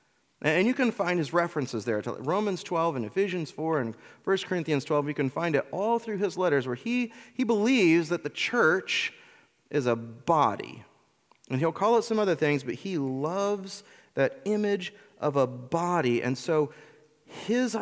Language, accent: English, American